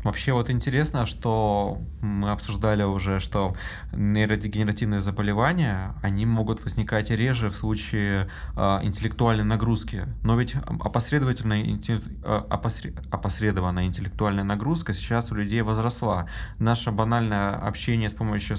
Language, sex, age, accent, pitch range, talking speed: Russian, male, 20-39, native, 100-115 Hz, 105 wpm